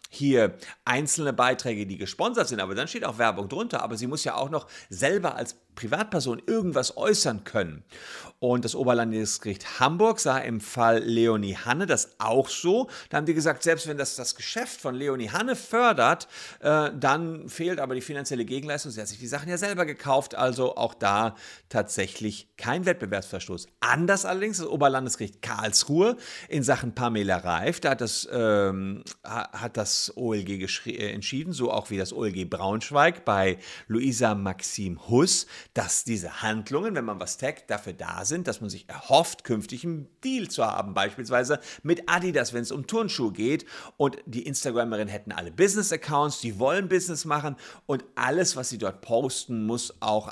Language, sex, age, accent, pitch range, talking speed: German, male, 50-69, German, 105-145 Hz, 165 wpm